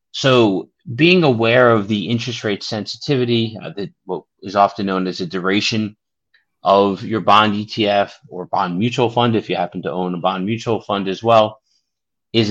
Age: 30-49